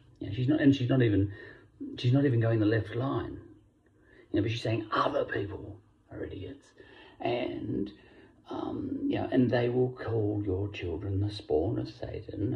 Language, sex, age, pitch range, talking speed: English, male, 40-59, 100-135 Hz, 170 wpm